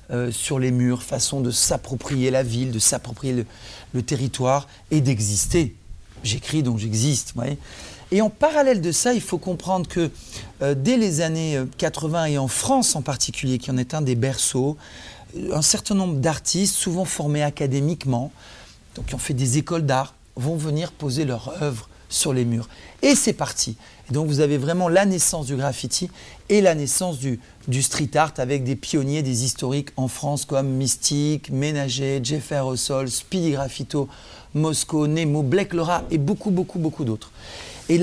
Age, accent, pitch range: 40-59, French, 130-170 Hz